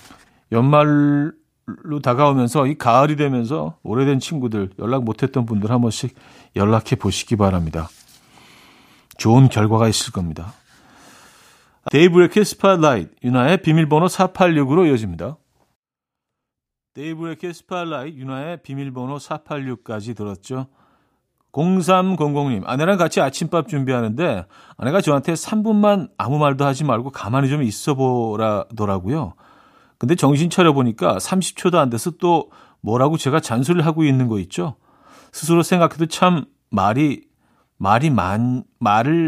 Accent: native